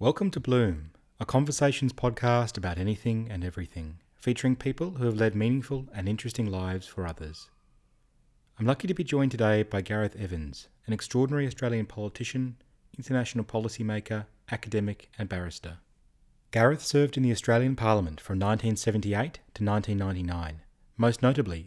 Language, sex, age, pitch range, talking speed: English, male, 30-49, 100-125 Hz, 140 wpm